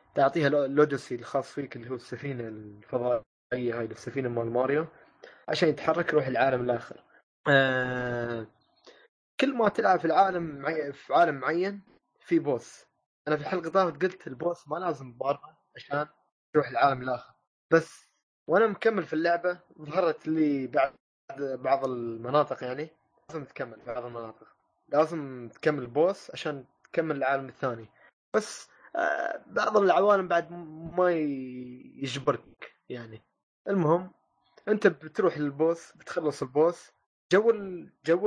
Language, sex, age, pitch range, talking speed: Arabic, male, 20-39, 130-170 Hz, 120 wpm